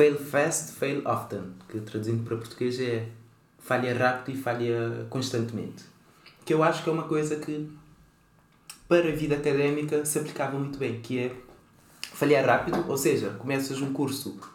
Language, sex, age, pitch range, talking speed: Portuguese, male, 20-39, 115-140 Hz, 160 wpm